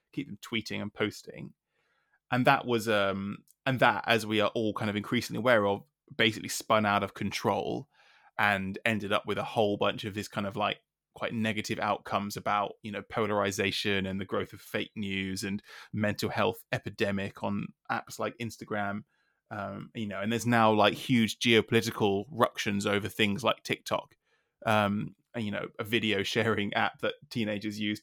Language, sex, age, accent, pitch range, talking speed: English, male, 20-39, British, 100-115 Hz, 175 wpm